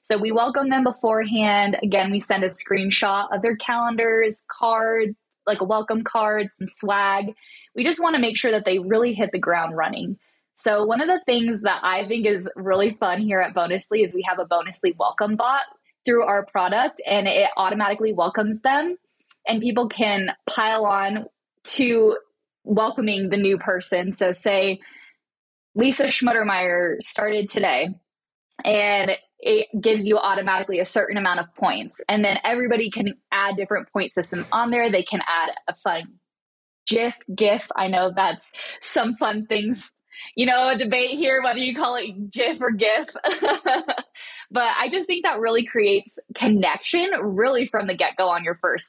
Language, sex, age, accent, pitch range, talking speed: English, female, 10-29, American, 195-240 Hz, 170 wpm